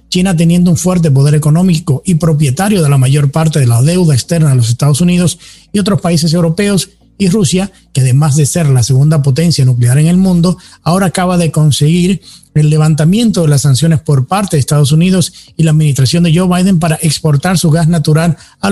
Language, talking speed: English, 200 wpm